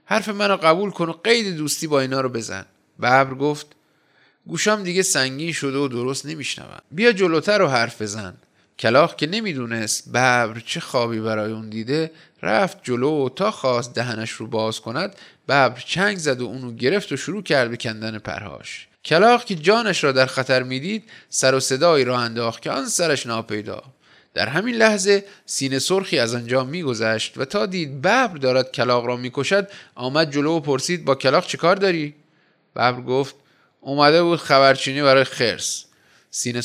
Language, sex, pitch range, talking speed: Persian, male, 120-165 Hz, 170 wpm